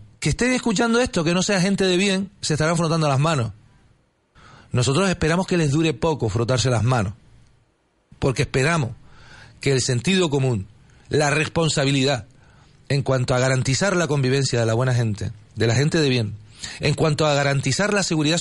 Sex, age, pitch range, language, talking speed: male, 40-59, 130-180 Hz, Spanish, 175 wpm